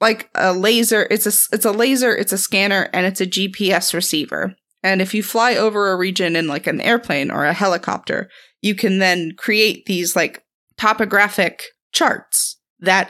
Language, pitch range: English, 175-220 Hz